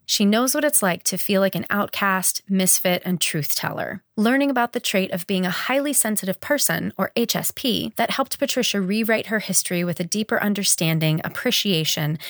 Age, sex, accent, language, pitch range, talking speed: 30-49, female, American, English, 175-240 Hz, 175 wpm